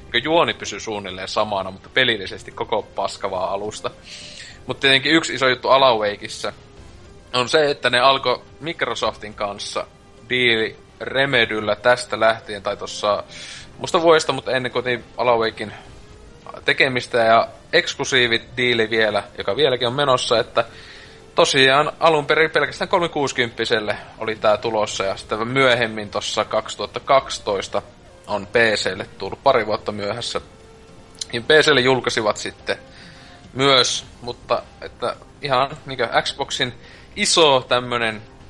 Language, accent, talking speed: Finnish, native, 115 wpm